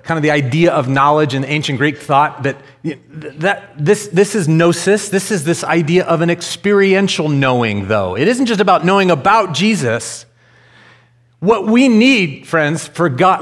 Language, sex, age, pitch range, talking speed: English, male, 40-59, 130-180 Hz, 170 wpm